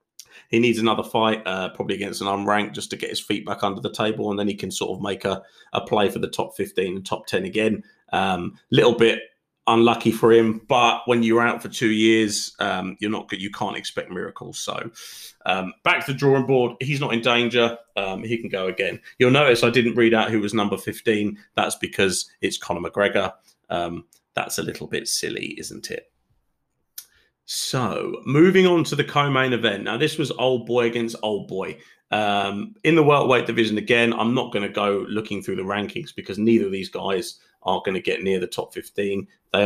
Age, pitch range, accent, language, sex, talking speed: 30-49, 105-125 Hz, British, English, male, 215 wpm